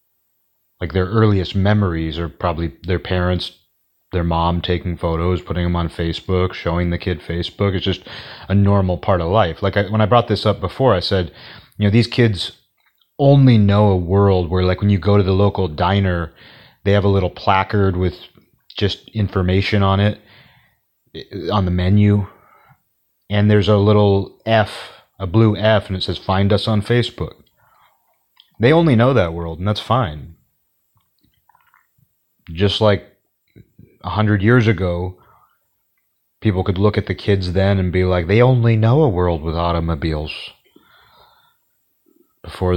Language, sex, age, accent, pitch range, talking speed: English, male, 30-49, American, 90-105 Hz, 160 wpm